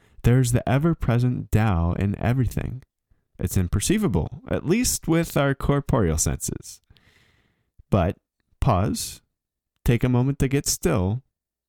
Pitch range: 95-125 Hz